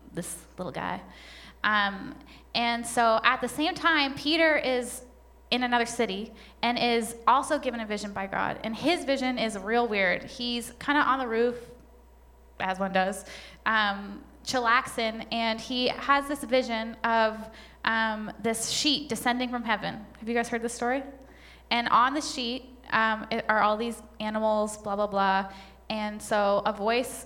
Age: 10-29